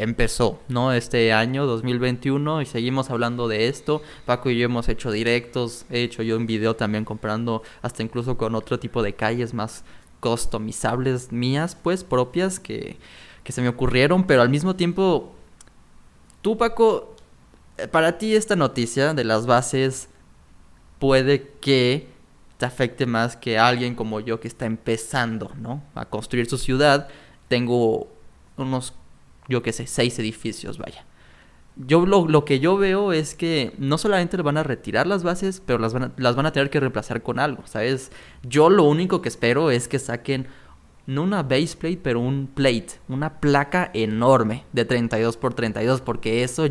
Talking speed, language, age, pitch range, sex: 165 wpm, Spanish, 20-39, 115-145 Hz, male